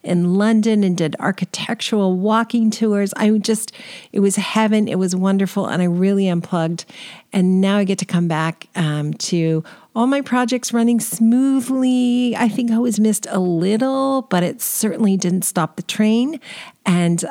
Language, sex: English, female